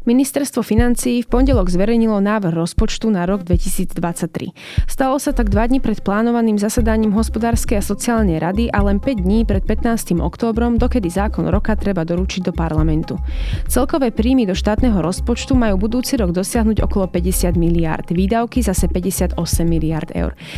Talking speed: 155 wpm